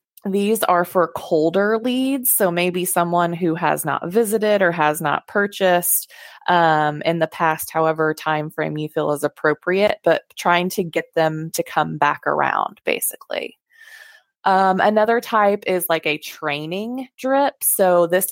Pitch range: 155-195 Hz